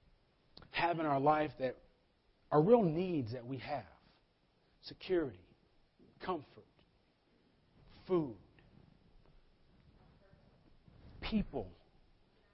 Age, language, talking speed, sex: 40-59, English, 70 wpm, male